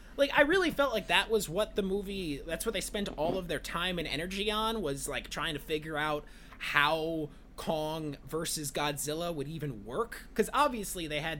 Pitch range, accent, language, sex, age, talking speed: 155-235 Hz, American, English, male, 20-39, 200 wpm